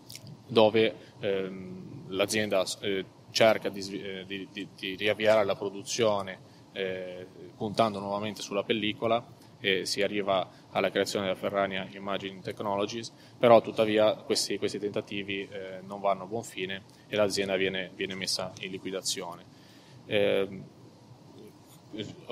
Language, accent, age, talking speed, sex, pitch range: Italian, native, 20-39, 115 wpm, male, 95-110 Hz